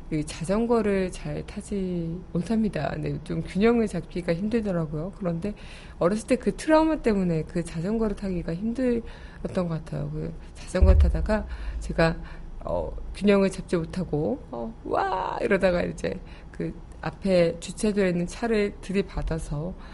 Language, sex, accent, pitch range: Korean, female, native, 170-210 Hz